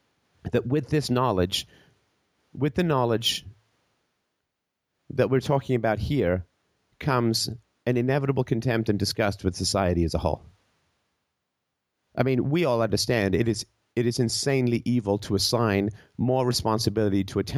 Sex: male